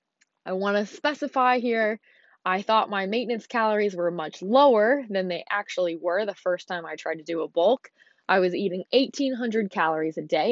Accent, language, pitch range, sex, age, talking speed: American, English, 180-220 Hz, female, 20-39, 190 wpm